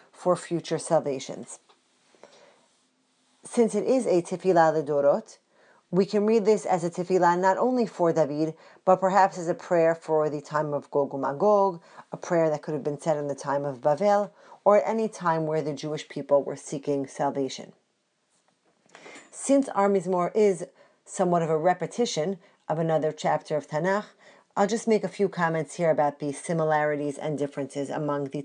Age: 40-59